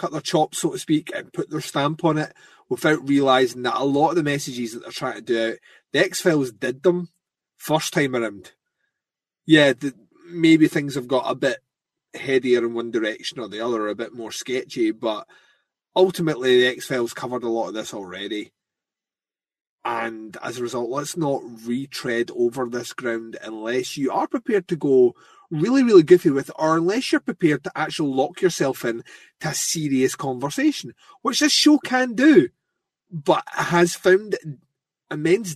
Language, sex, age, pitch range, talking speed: English, male, 30-49, 130-190 Hz, 175 wpm